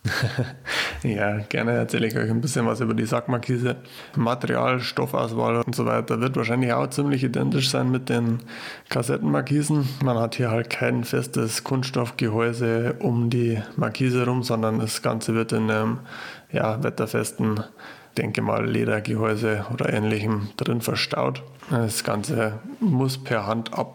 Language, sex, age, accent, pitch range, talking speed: German, male, 20-39, German, 110-120 Hz, 145 wpm